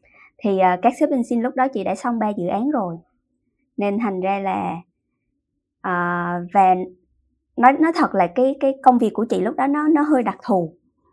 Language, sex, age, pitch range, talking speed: Vietnamese, male, 20-39, 190-245 Hz, 205 wpm